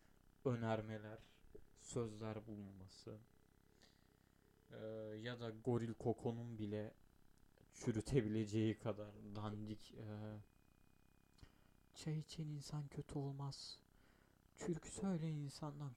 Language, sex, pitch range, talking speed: Turkish, male, 105-130 Hz, 80 wpm